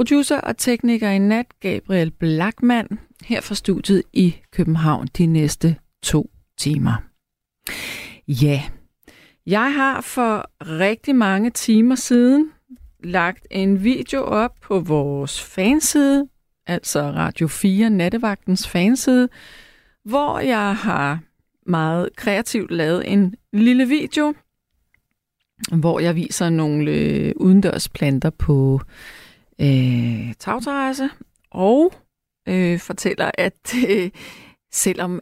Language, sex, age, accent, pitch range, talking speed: Danish, female, 30-49, native, 160-240 Hz, 100 wpm